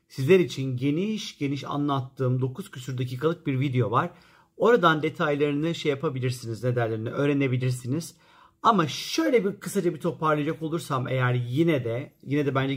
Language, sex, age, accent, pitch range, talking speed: Turkish, male, 50-69, native, 135-180 Hz, 140 wpm